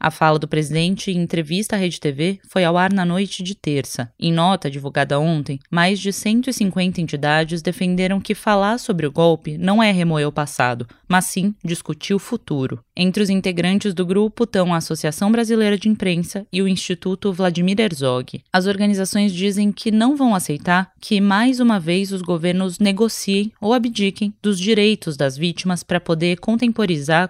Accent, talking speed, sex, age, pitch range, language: Brazilian, 170 wpm, female, 20-39, 175-210 Hz, Portuguese